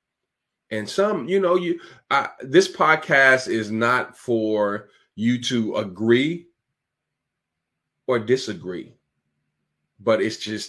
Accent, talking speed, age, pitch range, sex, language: American, 105 wpm, 30-49, 95-125 Hz, male, English